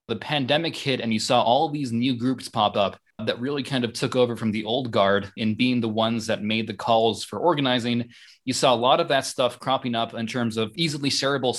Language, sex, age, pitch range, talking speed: English, male, 20-39, 110-130 Hz, 240 wpm